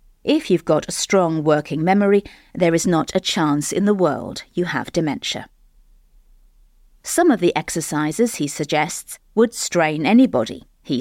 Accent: British